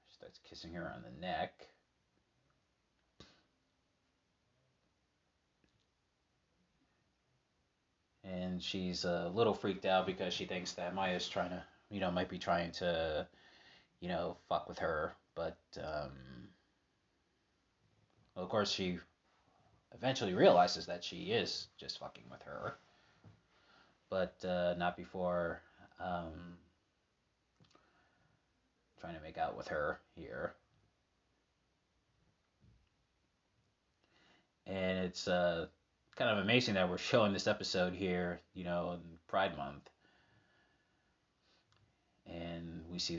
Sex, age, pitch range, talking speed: male, 30-49, 85-95 Hz, 105 wpm